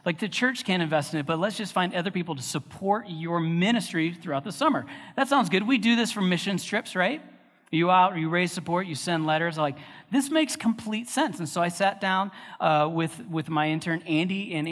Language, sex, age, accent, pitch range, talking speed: English, male, 40-59, American, 140-185 Hz, 230 wpm